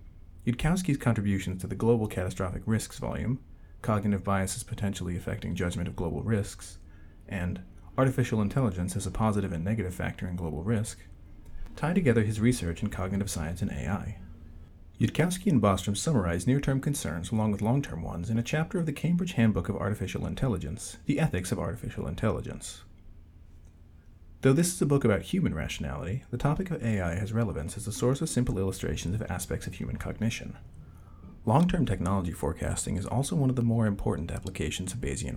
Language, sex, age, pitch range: English, male, 40-59, 85-115 Hz